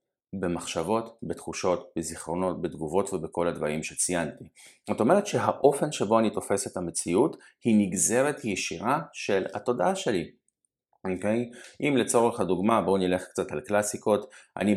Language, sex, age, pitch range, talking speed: Hebrew, male, 30-49, 85-100 Hz, 125 wpm